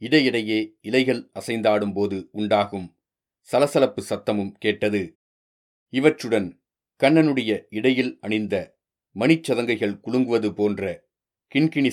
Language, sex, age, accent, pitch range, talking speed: Tamil, male, 40-59, native, 105-130 Hz, 75 wpm